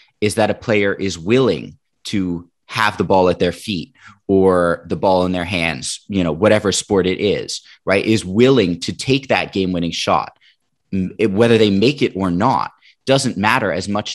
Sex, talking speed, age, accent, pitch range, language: male, 185 wpm, 30-49, American, 90-115 Hz, English